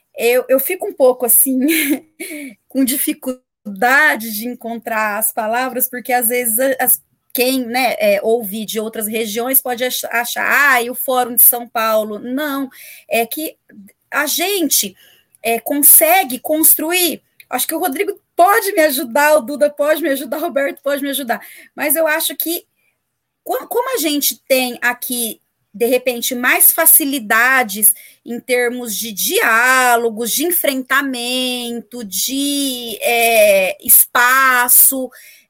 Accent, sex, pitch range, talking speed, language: Brazilian, female, 235-300 Hz, 135 wpm, Portuguese